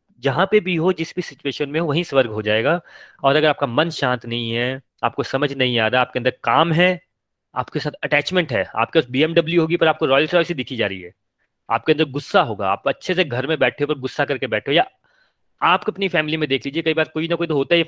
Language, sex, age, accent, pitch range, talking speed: Hindi, male, 30-49, native, 130-175 Hz, 245 wpm